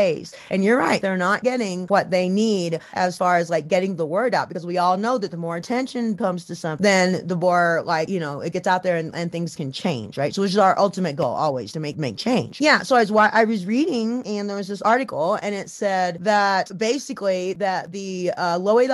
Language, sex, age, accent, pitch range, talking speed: English, female, 30-49, American, 175-225 Hz, 240 wpm